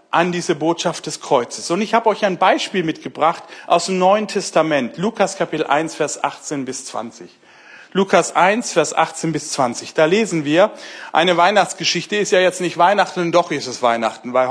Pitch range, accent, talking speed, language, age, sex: 160-220 Hz, German, 180 wpm, German, 60-79, male